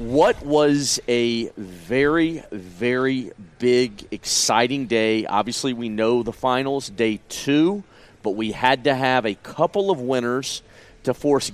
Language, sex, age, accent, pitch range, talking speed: English, male, 40-59, American, 115-135 Hz, 135 wpm